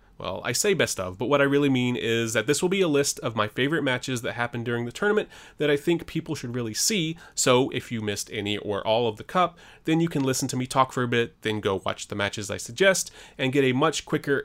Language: English